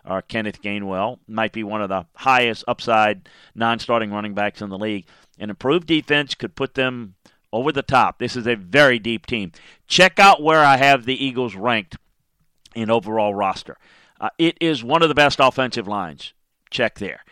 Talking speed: 185 wpm